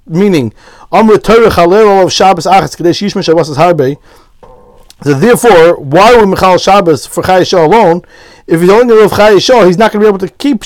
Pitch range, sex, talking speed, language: 175-215 Hz, male, 130 wpm, English